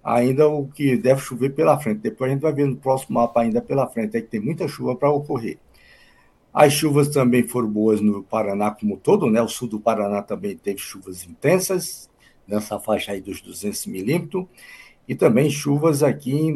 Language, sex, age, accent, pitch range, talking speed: Portuguese, male, 60-79, Brazilian, 105-140 Hz, 190 wpm